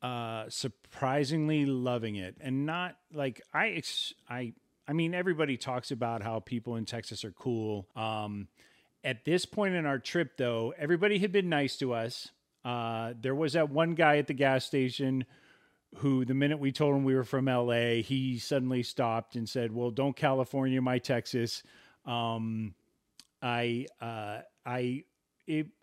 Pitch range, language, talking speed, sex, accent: 115-145 Hz, English, 160 wpm, male, American